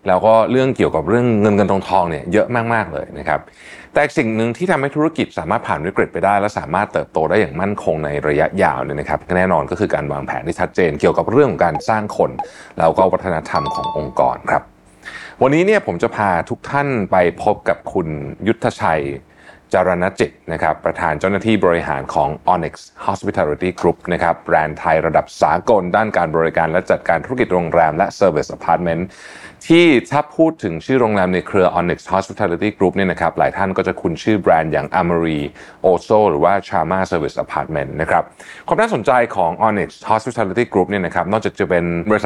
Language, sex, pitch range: Thai, male, 85-110 Hz